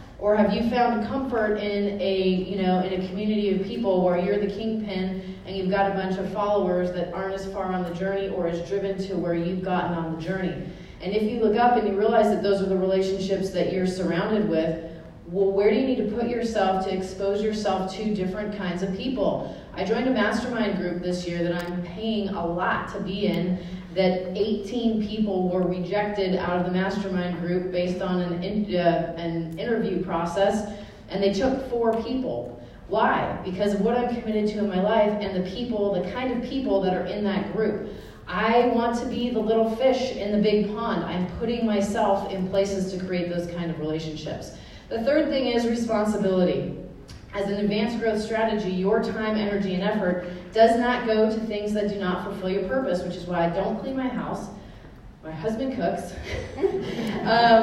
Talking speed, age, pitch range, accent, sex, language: 200 wpm, 30-49, 185-220 Hz, American, female, English